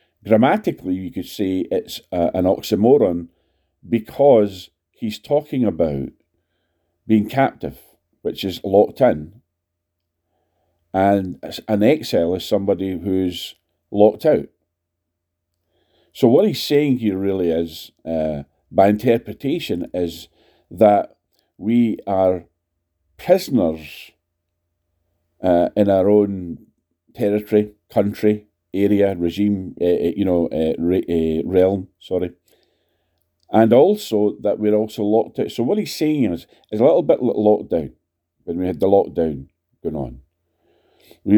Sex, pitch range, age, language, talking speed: male, 85-105 Hz, 40-59, English, 120 wpm